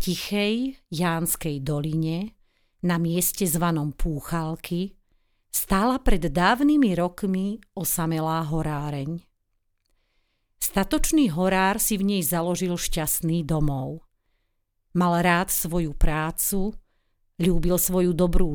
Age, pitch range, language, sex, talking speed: 40-59, 140-195 Hz, Slovak, female, 90 wpm